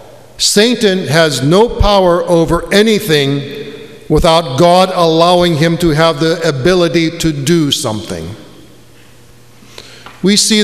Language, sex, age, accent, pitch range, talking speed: English, male, 50-69, American, 150-180 Hz, 105 wpm